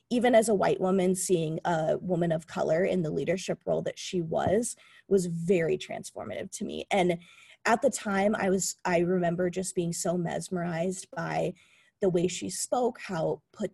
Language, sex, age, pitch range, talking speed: English, female, 20-39, 170-210 Hz, 180 wpm